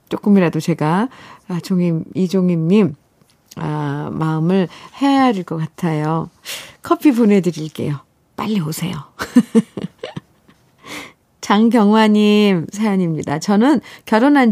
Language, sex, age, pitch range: Korean, female, 50-69, 175-245 Hz